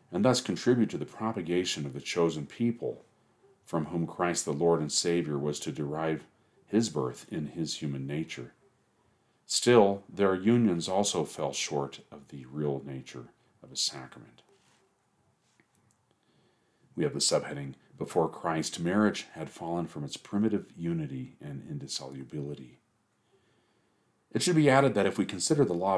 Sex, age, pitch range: male, 40-59, 80-115 Hz